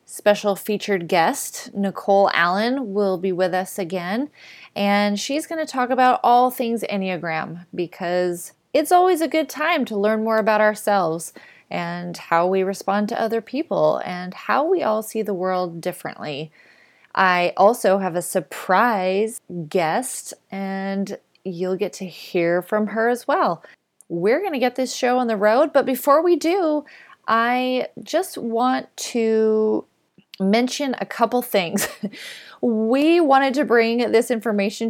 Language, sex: English, female